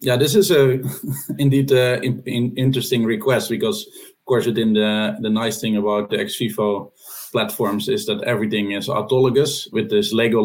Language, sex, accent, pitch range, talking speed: English, male, Dutch, 105-145 Hz, 170 wpm